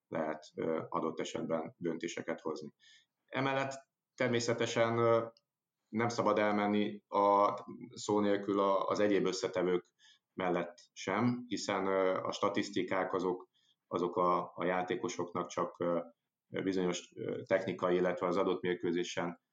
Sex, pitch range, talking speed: male, 85-110 Hz, 100 wpm